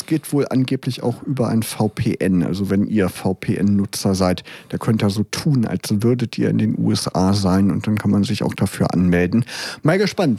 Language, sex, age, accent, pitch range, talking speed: German, male, 40-59, German, 120-155 Hz, 195 wpm